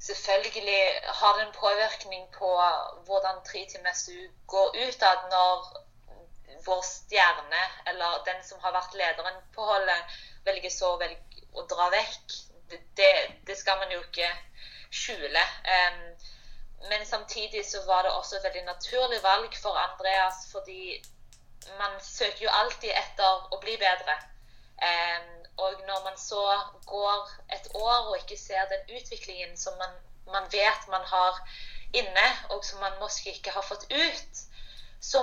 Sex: female